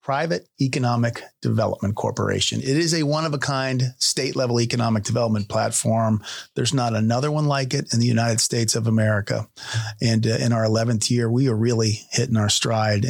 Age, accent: 40-59, American